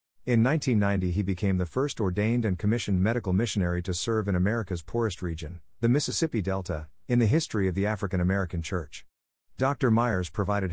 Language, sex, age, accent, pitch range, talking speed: English, male, 50-69, American, 90-115 Hz, 175 wpm